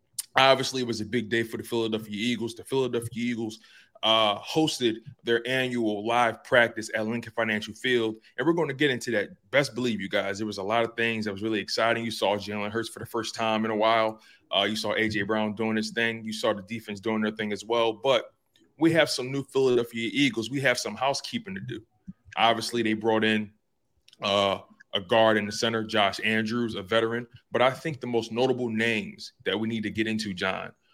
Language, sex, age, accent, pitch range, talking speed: English, male, 20-39, American, 110-120 Hz, 220 wpm